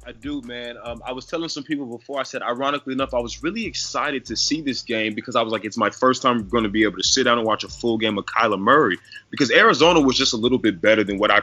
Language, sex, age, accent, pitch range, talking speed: English, male, 20-39, American, 105-155 Hz, 295 wpm